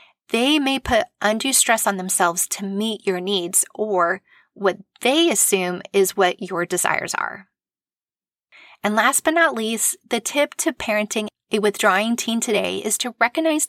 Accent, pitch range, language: American, 195-240 Hz, English